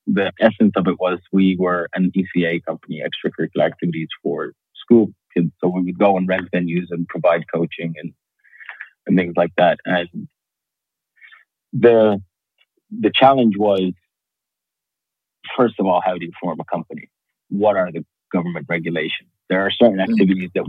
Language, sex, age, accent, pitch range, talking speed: English, male, 40-59, American, 90-105 Hz, 155 wpm